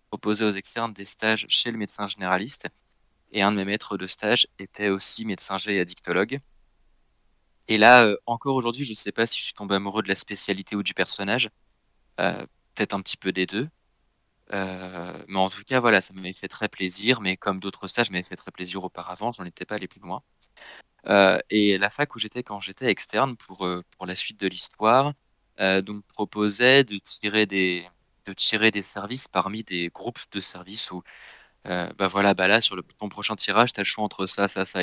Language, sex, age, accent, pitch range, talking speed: French, male, 20-39, French, 95-115 Hz, 210 wpm